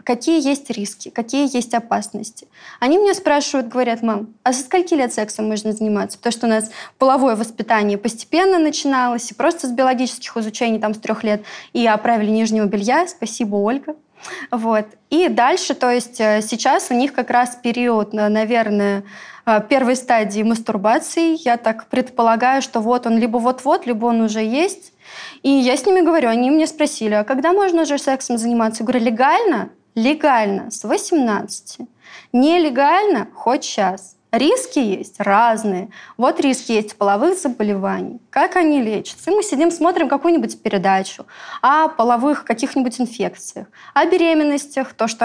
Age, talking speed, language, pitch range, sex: 20-39, 150 wpm, Russian, 220-290 Hz, female